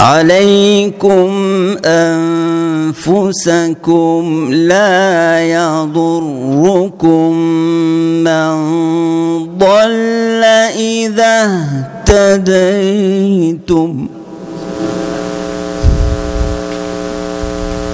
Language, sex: Arabic, male